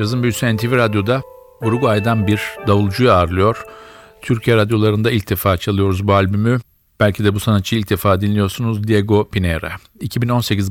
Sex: male